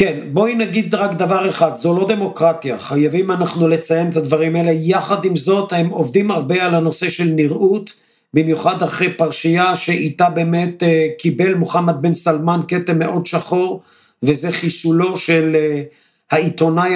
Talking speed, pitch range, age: 150 wpm, 165-190 Hz, 50-69